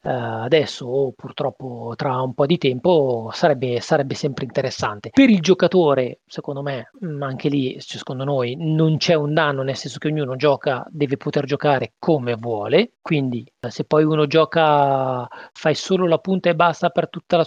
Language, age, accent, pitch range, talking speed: Italian, 30-49, native, 130-165 Hz, 175 wpm